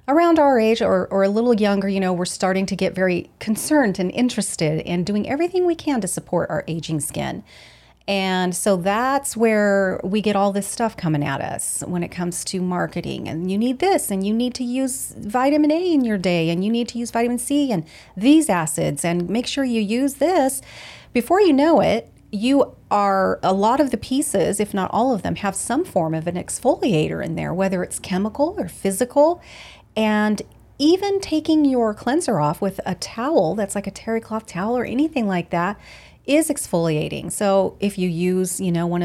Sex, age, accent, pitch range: female, 30-49, American, 175-235 Hz